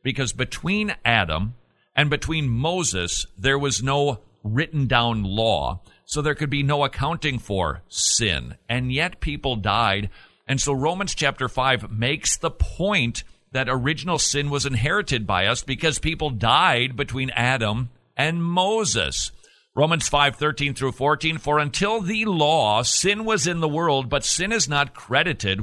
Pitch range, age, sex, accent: 115-145 Hz, 50-69, male, American